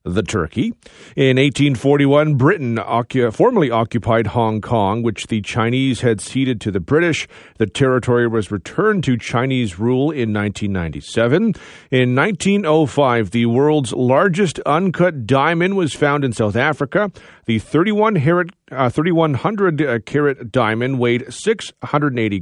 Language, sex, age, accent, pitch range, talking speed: English, male, 40-59, American, 120-155 Hz, 120 wpm